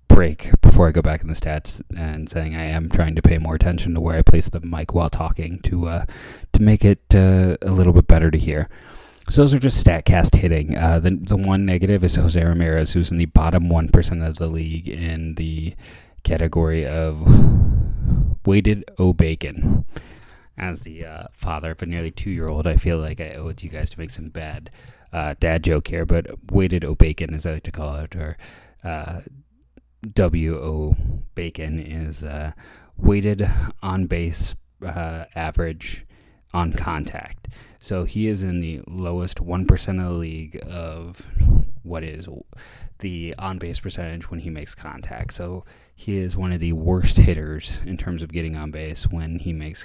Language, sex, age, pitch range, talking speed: English, male, 30-49, 80-95 Hz, 180 wpm